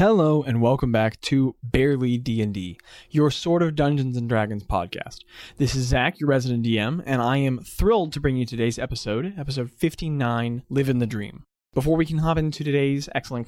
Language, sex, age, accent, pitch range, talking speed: English, male, 20-39, American, 120-150 Hz, 185 wpm